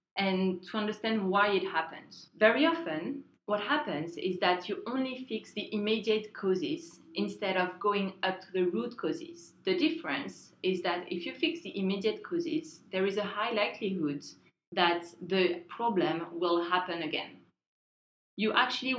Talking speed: 155 wpm